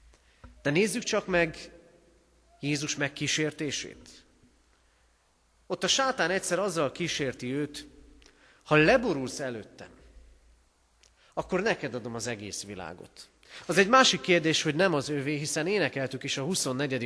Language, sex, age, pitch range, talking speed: Hungarian, male, 40-59, 105-165 Hz, 125 wpm